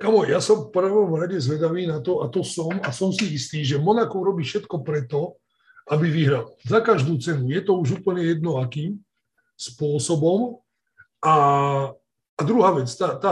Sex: male